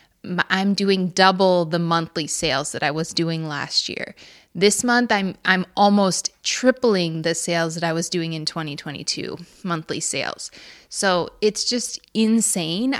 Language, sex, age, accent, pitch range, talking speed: English, female, 20-39, American, 170-195 Hz, 150 wpm